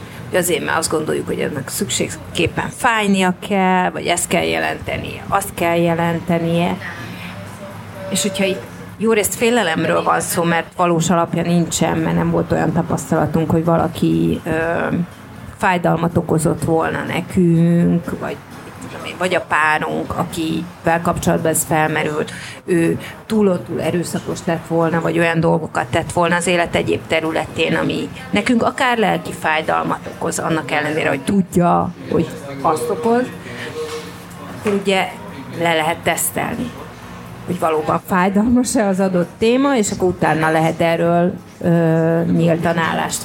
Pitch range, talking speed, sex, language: 160-195 Hz, 130 wpm, female, Hungarian